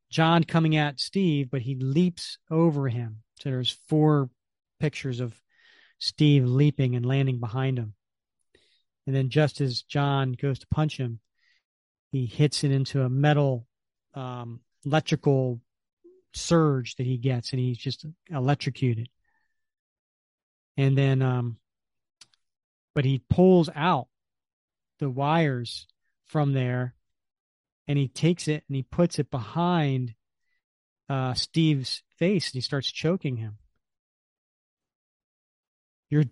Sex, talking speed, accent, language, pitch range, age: male, 120 wpm, American, English, 125-155 Hz, 40-59